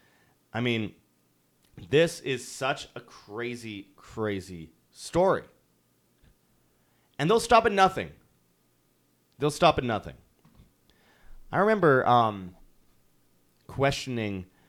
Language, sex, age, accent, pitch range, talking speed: English, male, 30-49, American, 90-110 Hz, 90 wpm